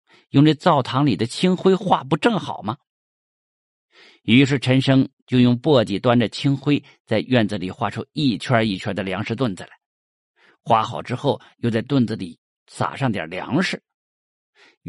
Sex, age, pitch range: male, 50-69, 110-145 Hz